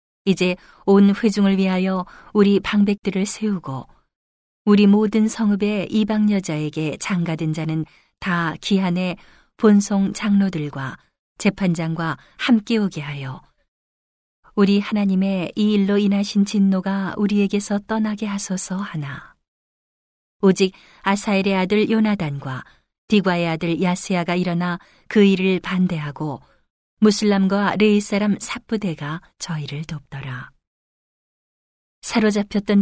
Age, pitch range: 40-59, 165-205 Hz